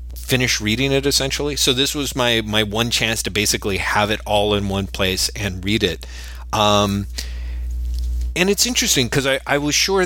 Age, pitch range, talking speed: 30-49, 90-115 Hz, 185 wpm